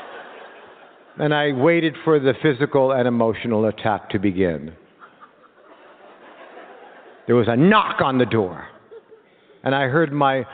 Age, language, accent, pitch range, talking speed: 60-79, English, American, 130-175 Hz, 125 wpm